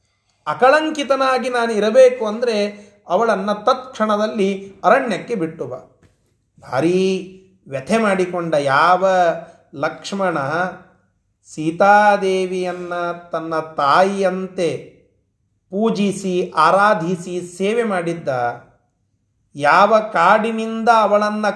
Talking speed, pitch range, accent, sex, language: 65 wpm, 135-215 Hz, native, male, Kannada